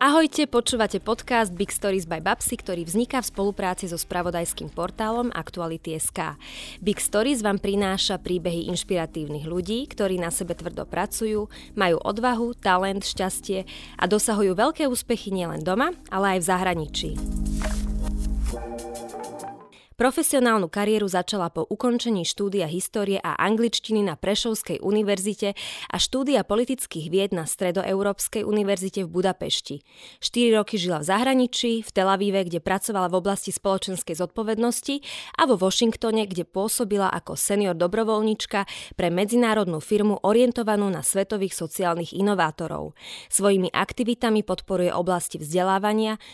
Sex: female